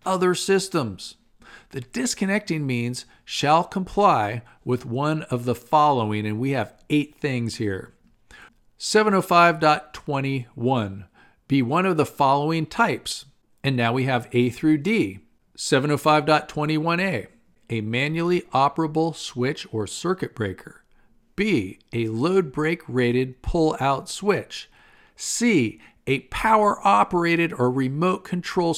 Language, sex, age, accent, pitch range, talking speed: English, male, 50-69, American, 125-170 Hz, 115 wpm